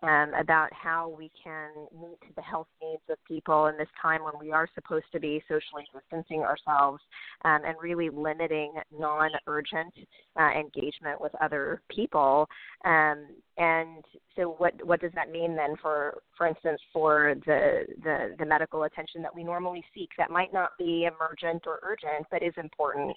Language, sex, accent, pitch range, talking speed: English, female, American, 155-175 Hz, 170 wpm